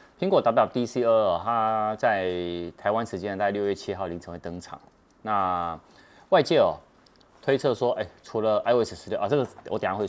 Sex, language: male, Chinese